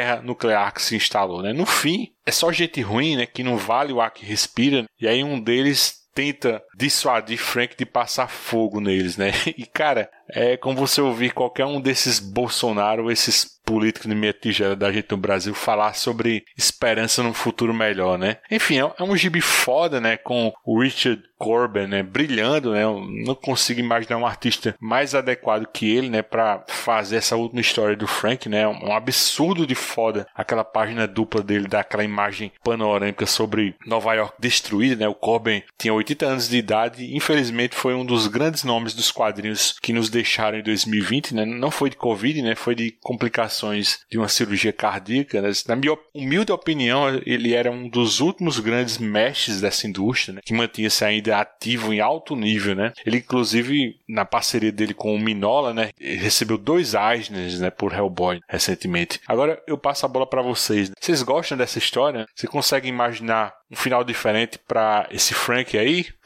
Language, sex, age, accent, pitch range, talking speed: Portuguese, male, 20-39, Brazilian, 105-125 Hz, 180 wpm